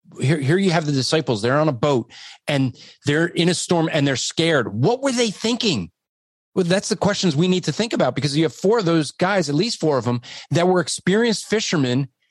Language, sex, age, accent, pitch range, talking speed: English, male, 40-59, American, 160-225 Hz, 230 wpm